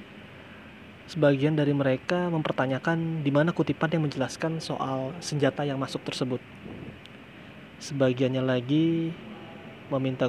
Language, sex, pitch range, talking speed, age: Indonesian, male, 130-160 Hz, 100 wpm, 20-39